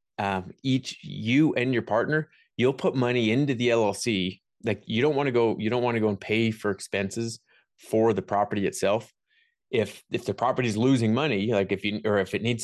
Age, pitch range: 30-49, 100-120 Hz